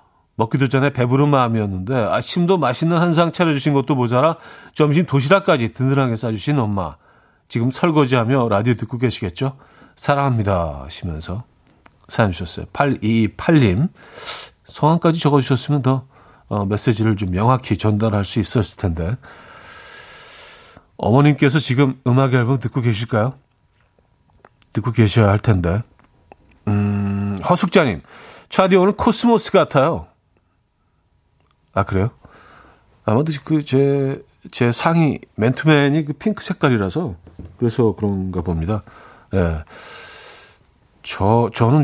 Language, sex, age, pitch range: Korean, male, 40-59, 100-145 Hz